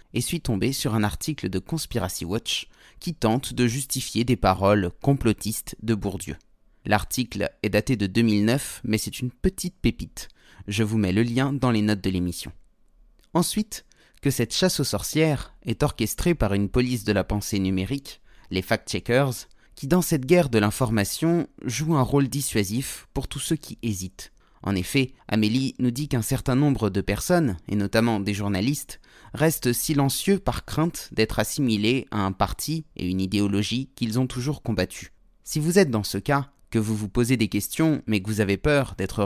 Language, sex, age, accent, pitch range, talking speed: French, male, 30-49, French, 100-135 Hz, 180 wpm